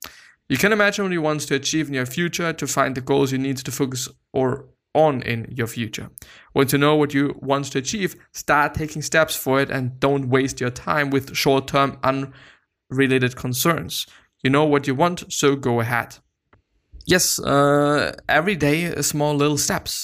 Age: 20-39